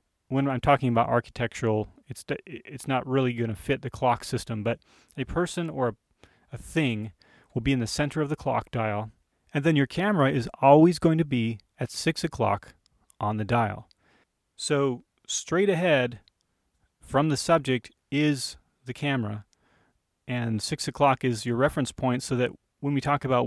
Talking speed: 170 wpm